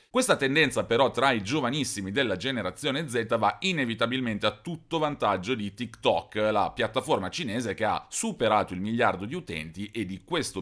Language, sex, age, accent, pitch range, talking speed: Italian, male, 40-59, native, 95-140 Hz, 165 wpm